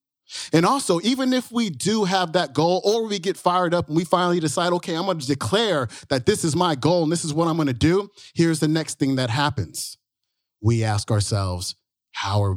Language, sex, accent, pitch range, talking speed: English, male, American, 130-170 Hz, 225 wpm